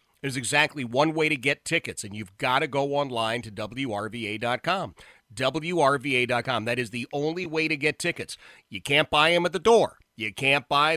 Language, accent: English, American